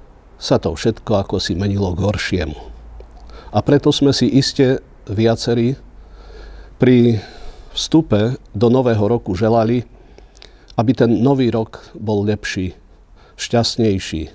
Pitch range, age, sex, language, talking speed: 100-125 Hz, 50-69, male, Slovak, 115 wpm